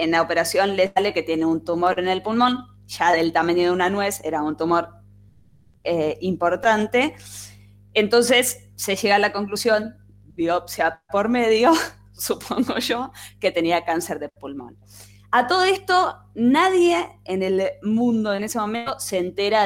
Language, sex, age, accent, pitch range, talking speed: Spanish, female, 20-39, Argentinian, 150-210 Hz, 155 wpm